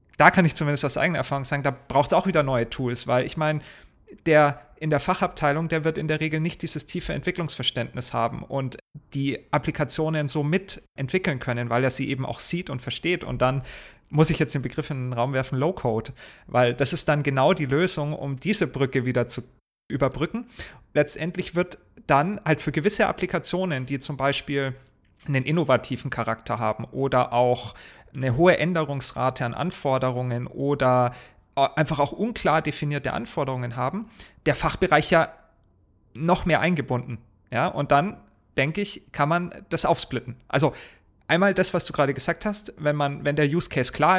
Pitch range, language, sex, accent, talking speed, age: 130-165 Hz, German, male, German, 175 wpm, 30-49